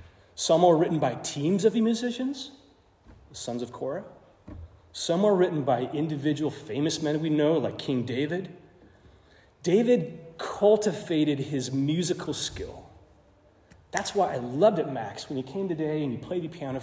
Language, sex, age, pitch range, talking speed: English, male, 30-49, 110-170 Hz, 155 wpm